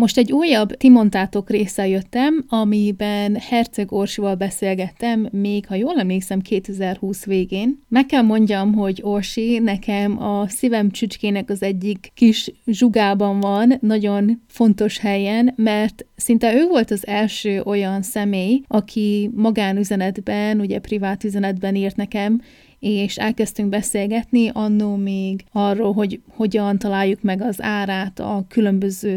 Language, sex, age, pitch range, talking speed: Hungarian, female, 30-49, 200-225 Hz, 130 wpm